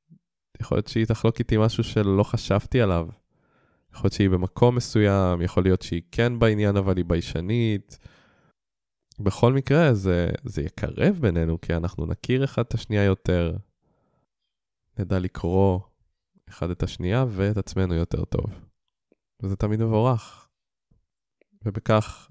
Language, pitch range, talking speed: Hebrew, 90-110 Hz, 130 wpm